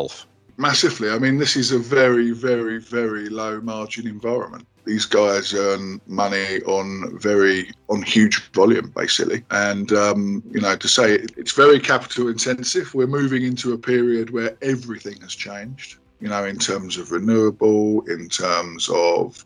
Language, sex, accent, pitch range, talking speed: English, male, British, 100-125 Hz, 155 wpm